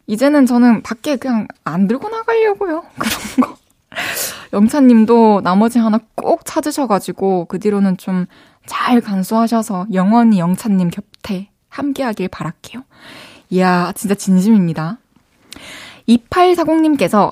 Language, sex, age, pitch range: Korean, female, 20-39, 200-275 Hz